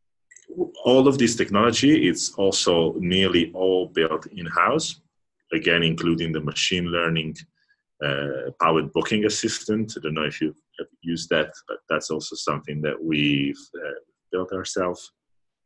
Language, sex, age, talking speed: English, male, 30-49, 140 wpm